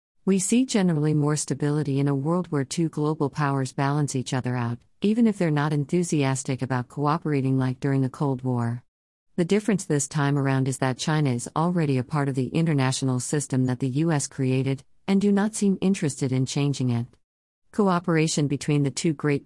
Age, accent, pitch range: 50-69, American, 130-165 Hz